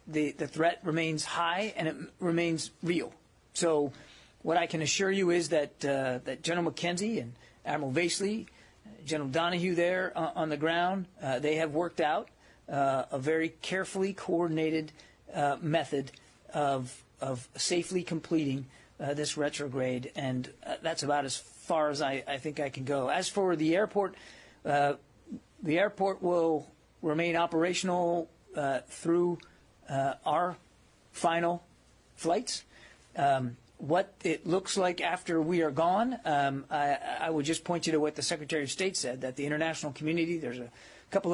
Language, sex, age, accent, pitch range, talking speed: English, male, 40-59, American, 145-170 Hz, 155 wpm